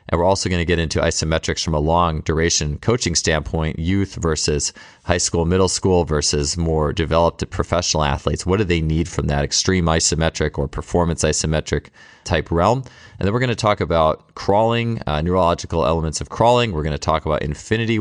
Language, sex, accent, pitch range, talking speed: English, male, American, 80-100 Hz, 185 wpm